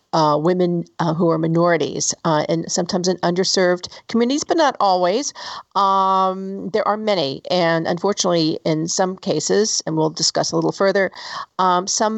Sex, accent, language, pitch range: female, American, English, 160-190 Hz